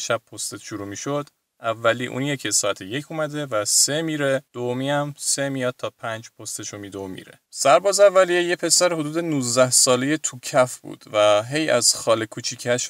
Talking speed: 180 wpm